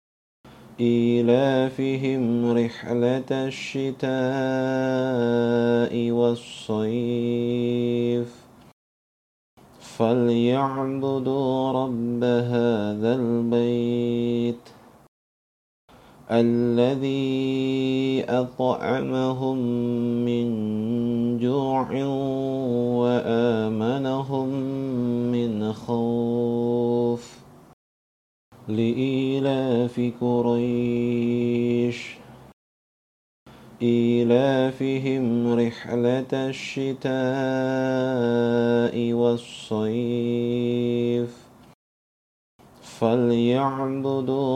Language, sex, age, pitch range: Indonesian, male, 50-69, 120-130 Hz